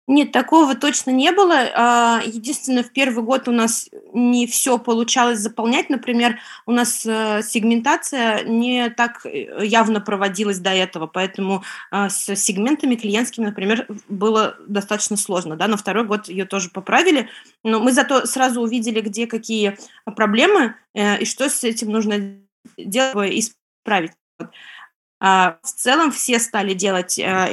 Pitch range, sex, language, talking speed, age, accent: 200-240 Hz, female, Russian, 130 wpm, 20-39, native